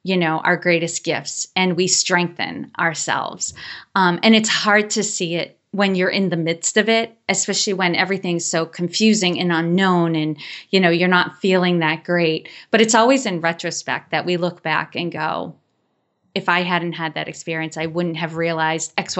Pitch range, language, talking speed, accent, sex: 170-215 Hz, English, 190 wpm, American, female